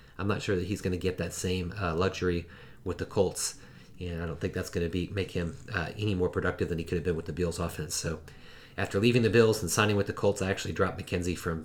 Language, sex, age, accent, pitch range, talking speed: English, male, 30-49, American, 85-110 Hz, 275 wpm